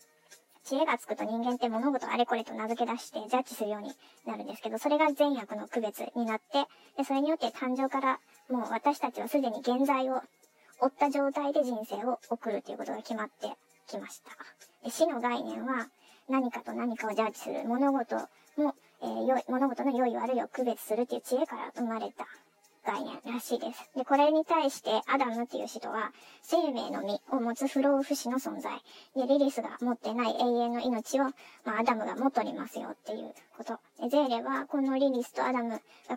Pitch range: 235-280 Hz